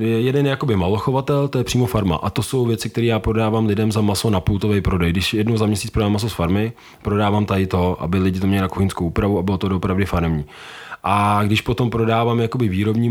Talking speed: 225 wpm